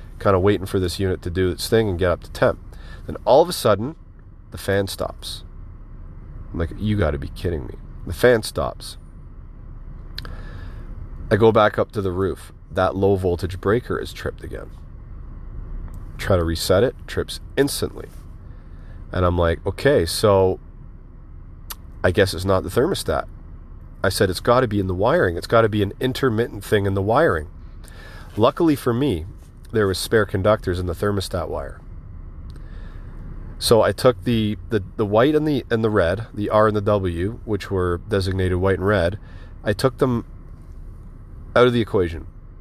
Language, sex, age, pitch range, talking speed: English, male, 40-59, 85-105 Hz, 175 wpm